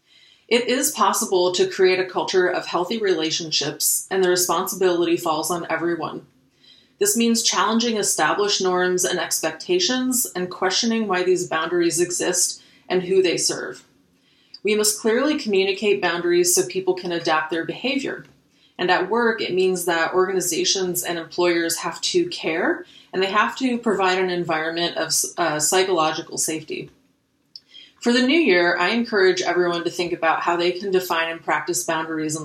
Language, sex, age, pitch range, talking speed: English, female, 30-49, 175-210 Hz, 155 wpm